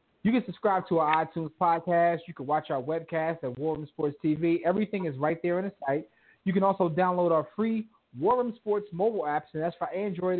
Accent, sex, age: American, male, 30-49